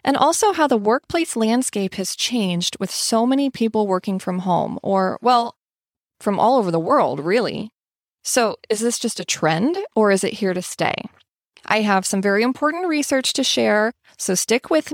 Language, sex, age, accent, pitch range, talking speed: English, female, 20-39, American, 185-265 Hz, 185 wpm